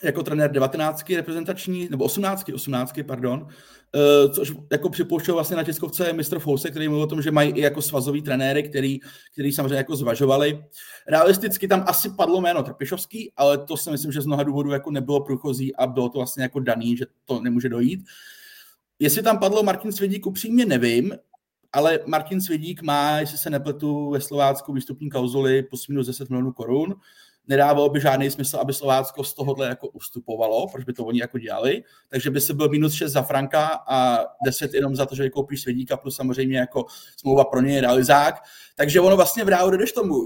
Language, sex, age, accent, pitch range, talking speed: Czech, male, 30-49, native, 135-175 Hz, 185 wpm